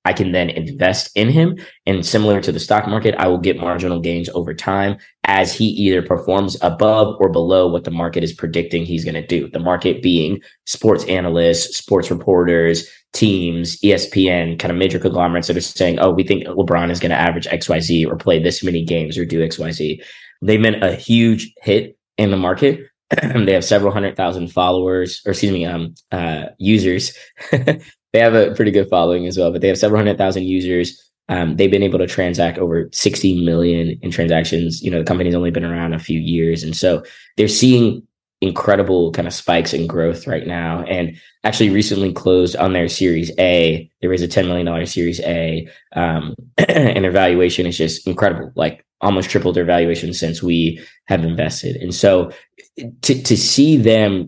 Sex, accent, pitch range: male, American, 85-100 Hz